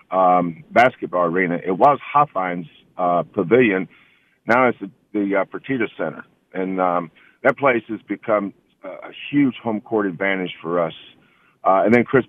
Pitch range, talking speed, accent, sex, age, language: 95-115 Hz, 155 wpm, American, male, 50-69, English